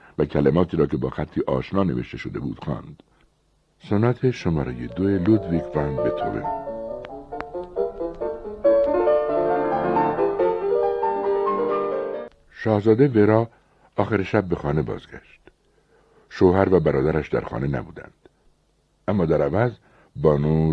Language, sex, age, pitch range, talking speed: Persian, male, 60-79, 80-115 Hz, 95 wpm